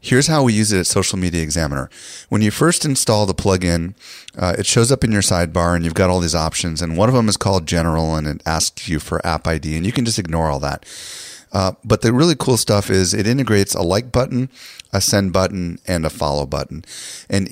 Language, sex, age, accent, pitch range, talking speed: English, male, 30-49, American, 90-110 Hz, 235 wpm